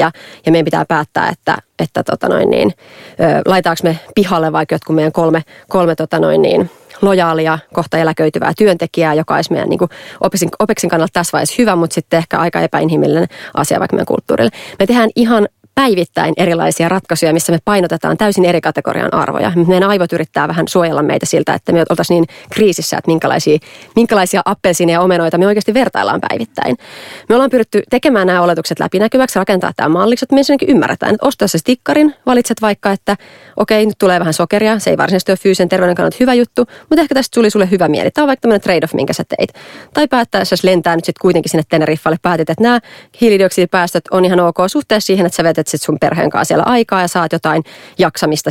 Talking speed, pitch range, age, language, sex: 190 wpm, 165-215 Hz, 30-49, Finnish, female